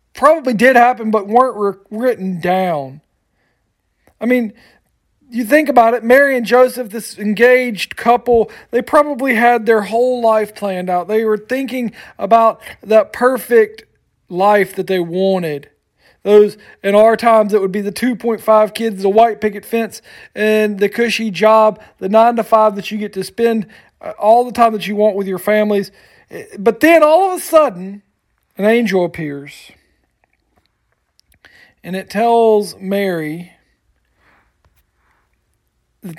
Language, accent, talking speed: English, American, 145 wpm